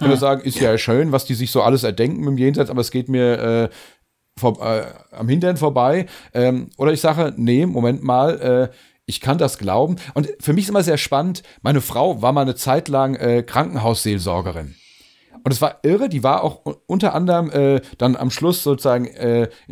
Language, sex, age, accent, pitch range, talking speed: German, male, 40-59, German, 130-170 Hz, 205 wpm